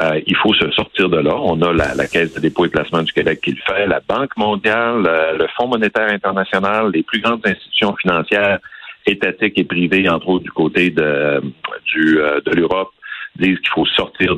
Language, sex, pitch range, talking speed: French, male, 80-100 Hz, 200 wpm